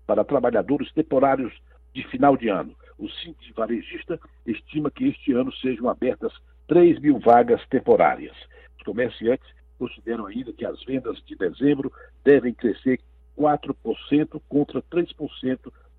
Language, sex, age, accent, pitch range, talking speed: Portuguese, male, 60-79, Brazilian, 110-180 Hz, 130 wpm